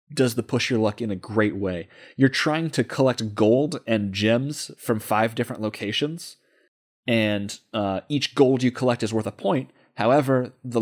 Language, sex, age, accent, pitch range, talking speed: English, male, 30-49, American, 105-125 Hz, 175 wpm